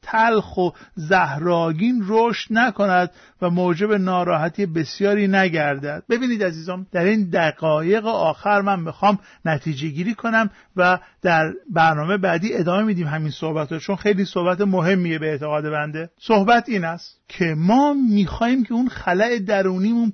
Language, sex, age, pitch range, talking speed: Persian, male, 50-69, 170-220 Hz, 135 wpm